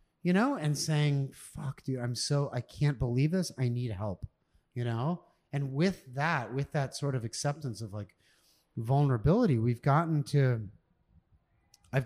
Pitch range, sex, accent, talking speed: 120-155 Hz, male, American, 160 wpm